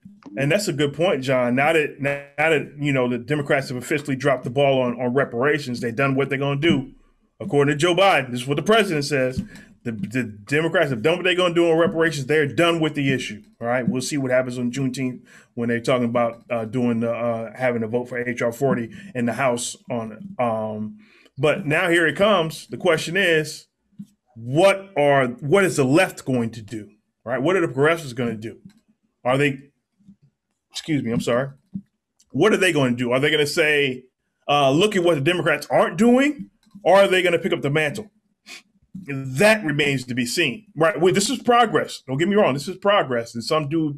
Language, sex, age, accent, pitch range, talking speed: English, male, 20-39, American, 125-175 Hz, 220 wpm